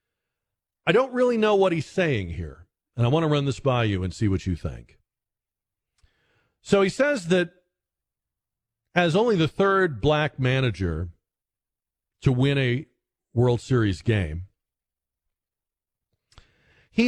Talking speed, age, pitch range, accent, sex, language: 135 wpm, 50-69, 105-160 Hz, American, male, English